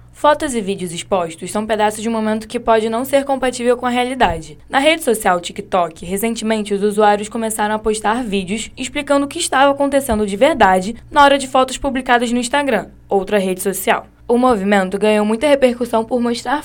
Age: 10-29